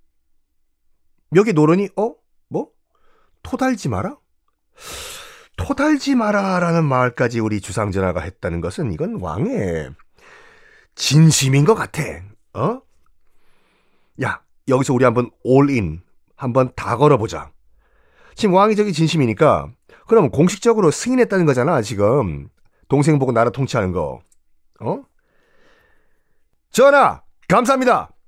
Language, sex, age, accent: Korean, male, 30-49, native